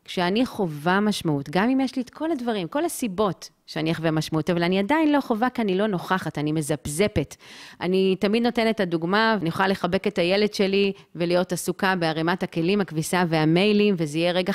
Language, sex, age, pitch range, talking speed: Hebrew, female, 30-49, 165-205 Hz, 190 wpm